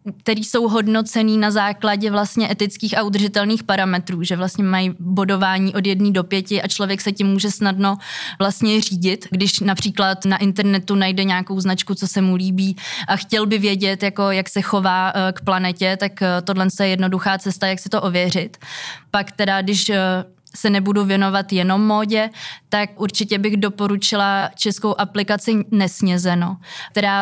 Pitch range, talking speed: 190-210 Hz, 160 wpm